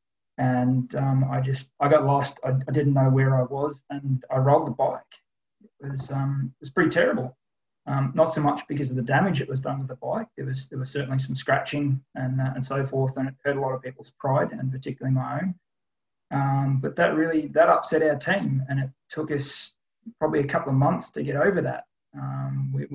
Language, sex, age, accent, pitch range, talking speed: English, male, 20-39, Australian, 135-145 Hz, 225 wpm